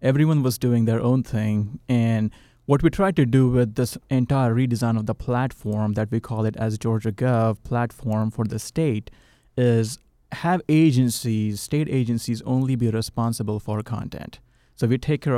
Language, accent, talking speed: English, Indian, 170 wpm